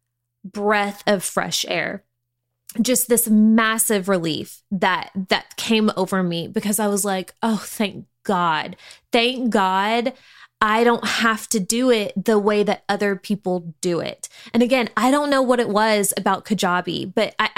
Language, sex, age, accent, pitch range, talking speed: English, female, 20-39, American, 195-240 Hz, 160 wpm